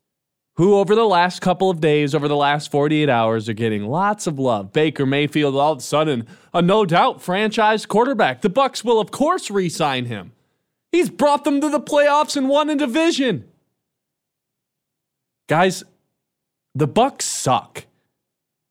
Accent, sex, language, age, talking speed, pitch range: American, male, English, 30-49, 155 wpm, 135-210 Hz